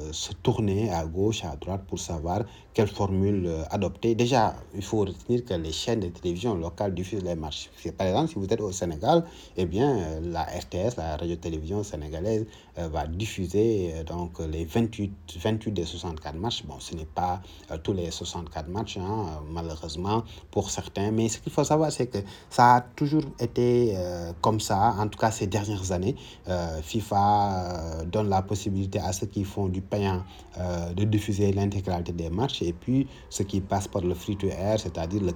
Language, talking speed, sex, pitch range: French, 190 wpm, male, 85-105 Hz